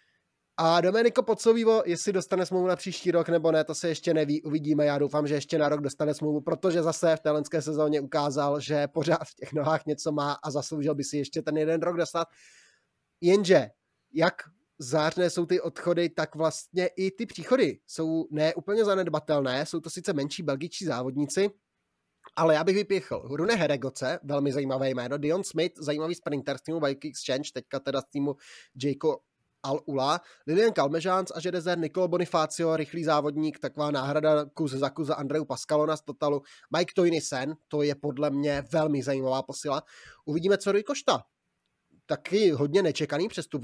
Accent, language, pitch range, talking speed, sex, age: native, Czech, 145-170 Hz, 165 wpm, male, 20-39